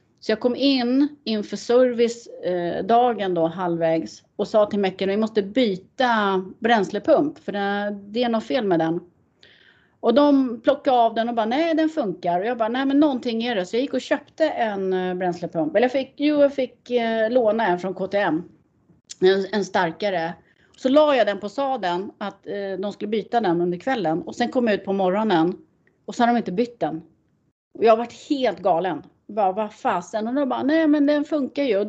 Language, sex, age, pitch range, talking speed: Swedish, female, 30-49, 185-255 Hz, 190 wpm